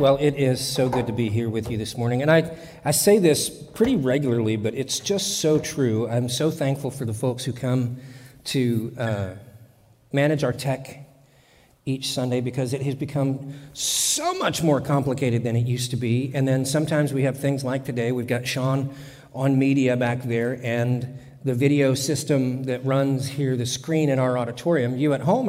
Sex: male